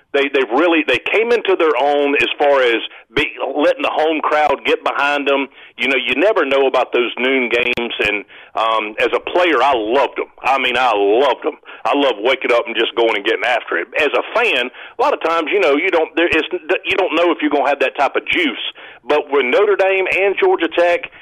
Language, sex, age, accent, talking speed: English, male, 40-59, American, 225 wpm